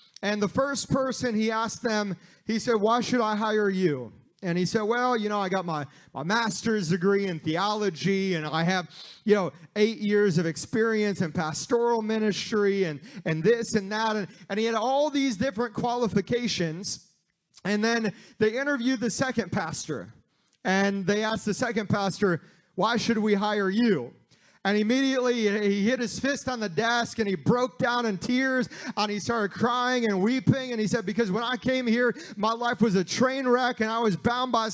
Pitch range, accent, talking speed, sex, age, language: 200-250 Hz, American, 190 wpm, male, 30-49, English